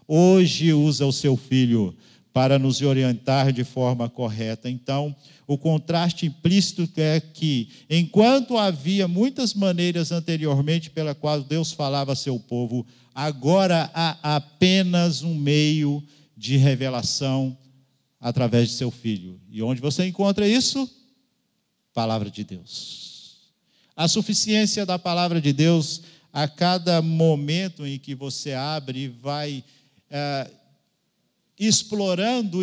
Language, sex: Portuguese, male